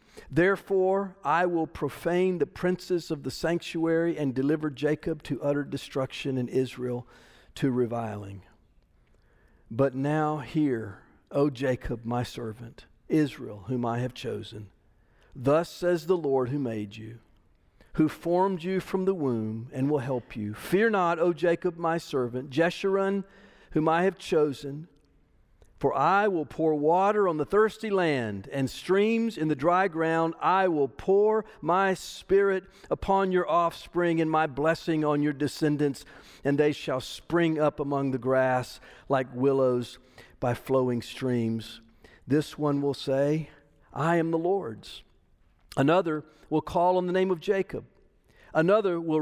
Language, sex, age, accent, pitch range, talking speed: English, male, 50-69, American, 125-175 Hz, 145 wpm